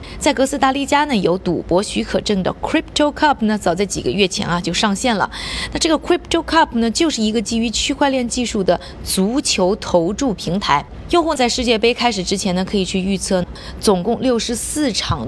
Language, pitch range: Chinese, 185-260 Hz